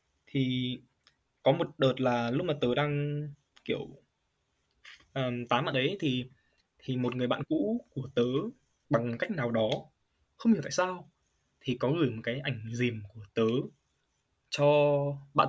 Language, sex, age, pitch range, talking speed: Vietnamese, male, 20-39, 125-150 Hz, 160 wpm